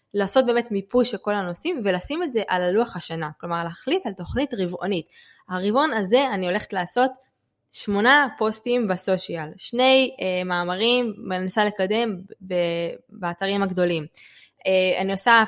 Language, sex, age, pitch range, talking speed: Hebrew, female, 20-39, 180-240 Hz, 145 wpm